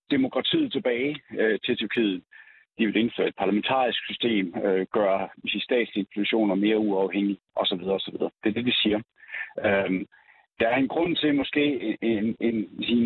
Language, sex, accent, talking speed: Danish, male, native, 160 wpm